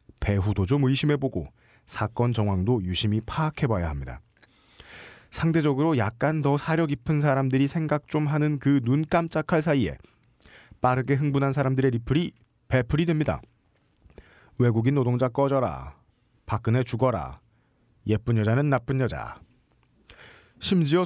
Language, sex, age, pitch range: Korean, male, 40-59, 110-150 Hz